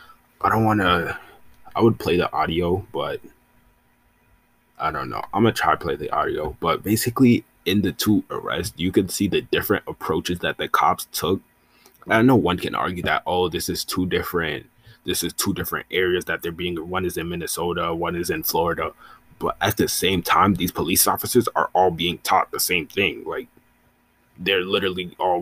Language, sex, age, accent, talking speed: English, male, 20-39, American, 190 wpm